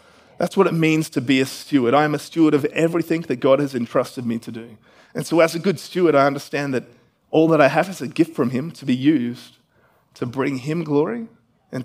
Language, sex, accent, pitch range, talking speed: English, male, Australian, 120-160 Hz, 240 wpm